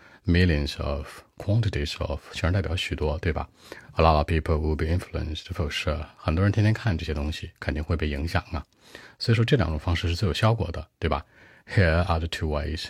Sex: male